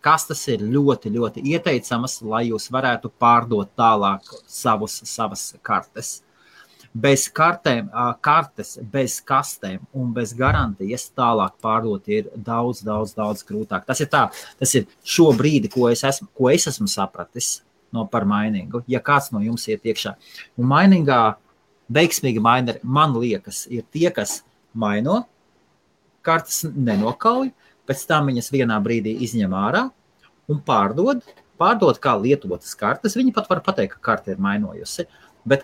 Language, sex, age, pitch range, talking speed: English, male, 30-49, 115-165 Hz, 135 wpm